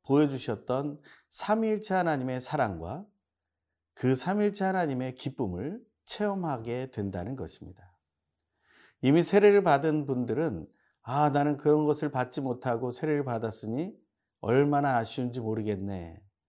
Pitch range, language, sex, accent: 100-165 Hz, Korean, male, native